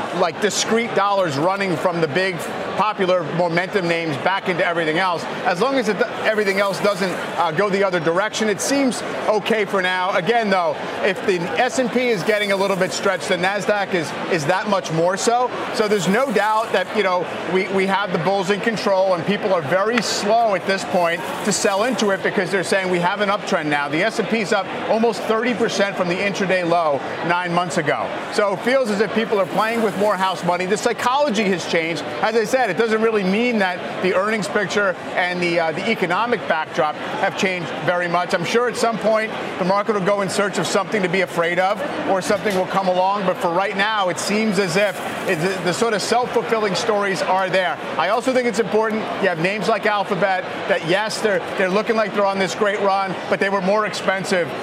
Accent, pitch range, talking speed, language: American, 185-215 Hz, 220 wpm, English